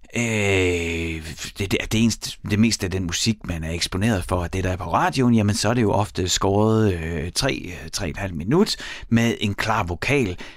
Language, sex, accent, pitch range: Danish, male, native, 95-145 Hz